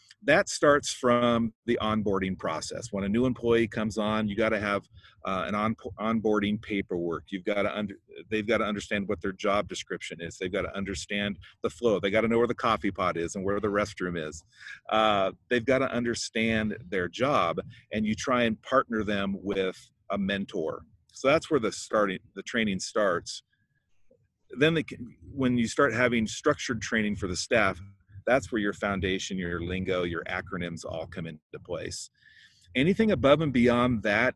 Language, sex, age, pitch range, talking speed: English, male, 40-59, 95-115 Hz, 170 wpm